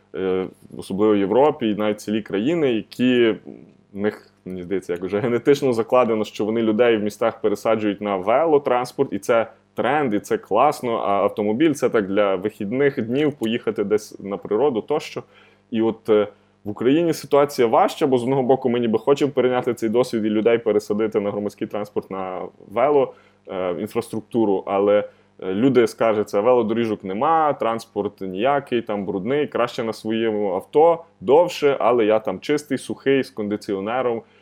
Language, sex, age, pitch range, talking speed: Ukrainian, male, 20-39, 100-125 Hz, 155 wpm